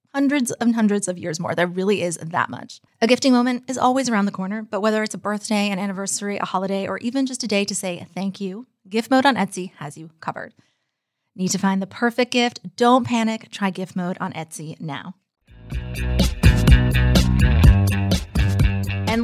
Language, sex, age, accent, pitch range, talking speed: English, female, 20-39, American, 185-245 Hz, 185 wpm